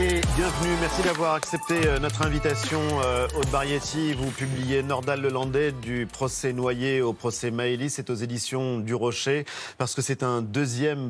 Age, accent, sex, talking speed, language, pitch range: 40-59, French, male, 155 wpm, French, 120-145 Hz